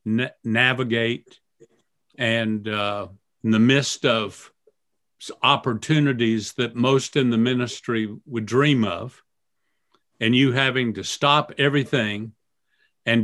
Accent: American